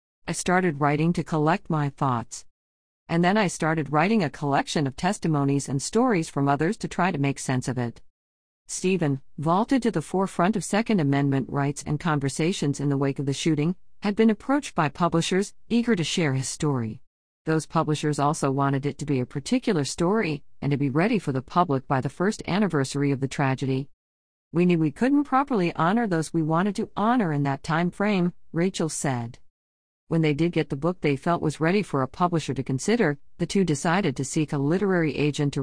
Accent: American